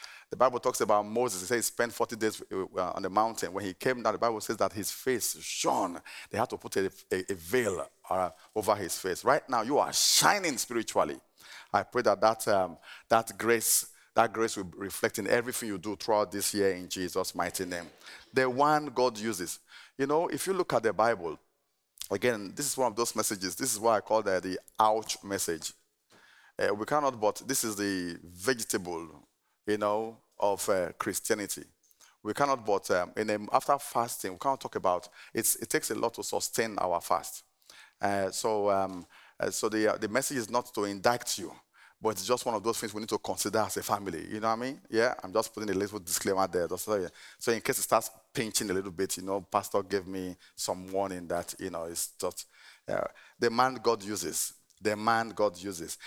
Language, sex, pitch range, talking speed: English, male, 100-120 Hz, 210 wpm